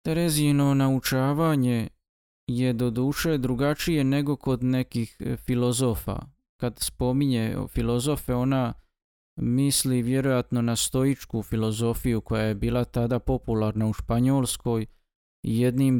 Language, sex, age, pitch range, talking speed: Croatian, male, 20-39, 110-130 Hz, 105 wpm